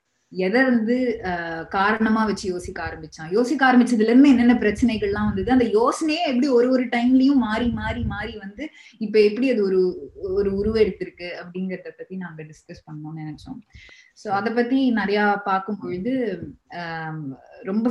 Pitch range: 175-235 Hz